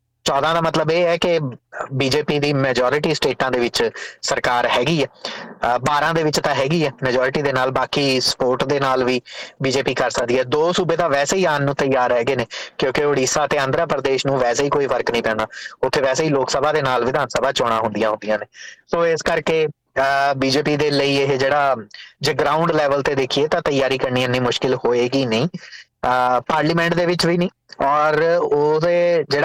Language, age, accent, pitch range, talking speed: English, 30-49, Indian, 130-160 Hz, 105 wpm